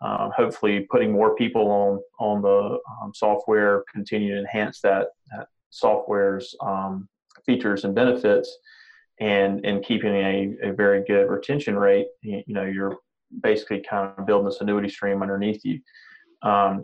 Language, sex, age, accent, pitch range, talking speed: English, male, 30-49, American, 100-105 Hz, 150 wpm